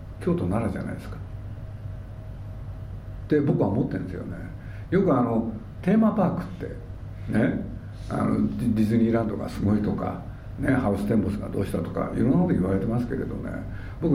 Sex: male